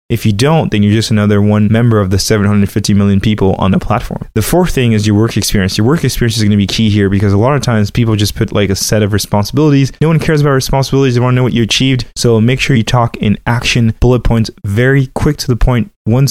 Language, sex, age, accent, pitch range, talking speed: English, male, 20-39, American, 105-125 Hz, 270 wpm